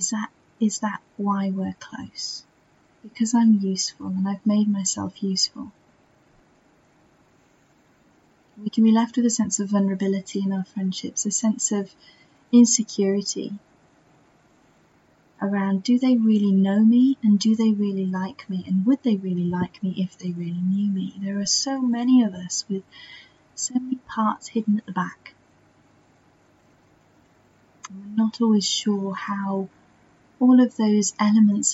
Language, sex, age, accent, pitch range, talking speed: English, female, 30-49, British, 190-225 Hz, 145 wpm